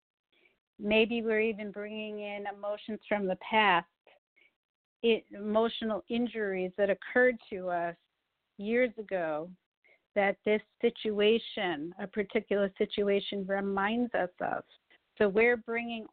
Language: English